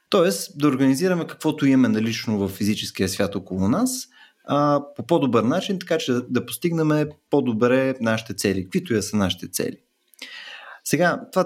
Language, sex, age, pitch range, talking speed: Bulgarian, male, 30-49, 100-140 Hz, 155 wpm